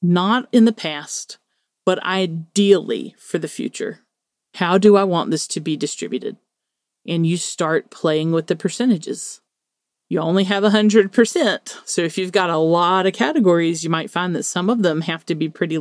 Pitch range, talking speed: 165-205 Hz, 180 wpm